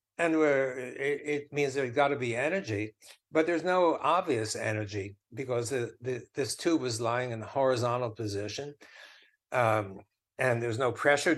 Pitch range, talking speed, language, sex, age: 110-145 Hz, 160 wpm, English, male, 60-79